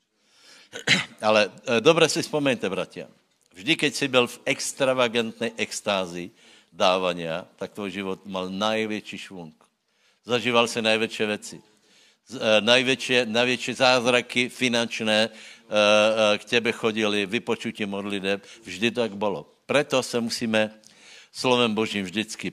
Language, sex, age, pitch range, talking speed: Slovak, male, 60-79, 100-120 Hz, 125 wpm